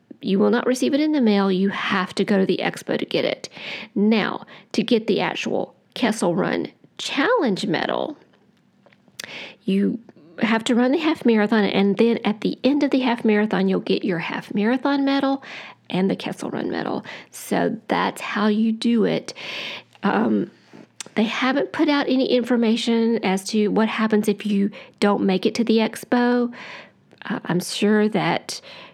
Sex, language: female, English